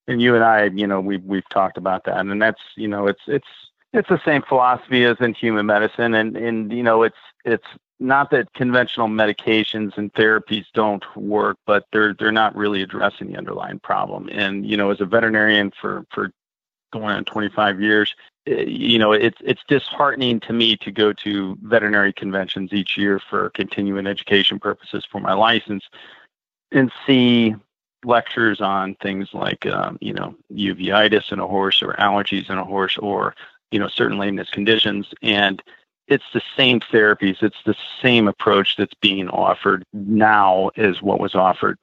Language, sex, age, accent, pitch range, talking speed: English, male, 40-59, American, 100-115 Hz, 175 wpm